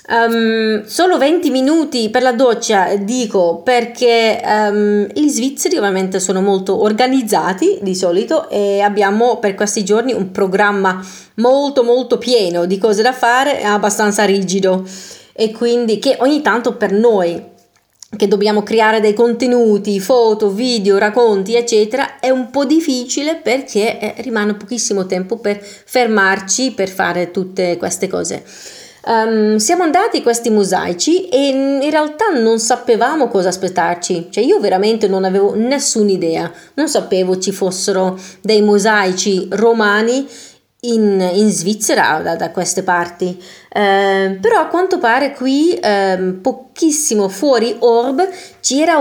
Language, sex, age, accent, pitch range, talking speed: Italian, female, 30-49, native, 195-250 Hz, 130 wpm